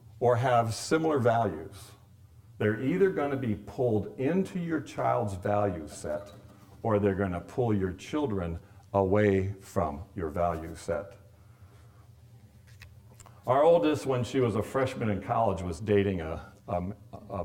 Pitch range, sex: 100-115 Hz, male